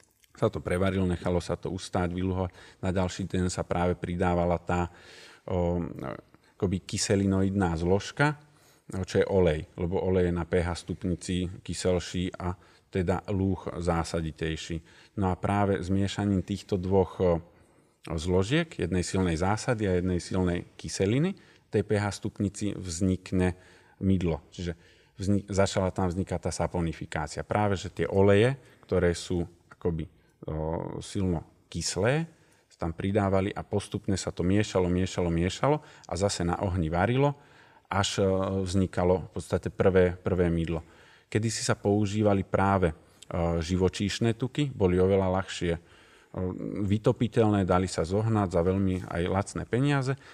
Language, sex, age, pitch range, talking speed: Slovak, male, 40-59, 90-105 Hz, 130 wpm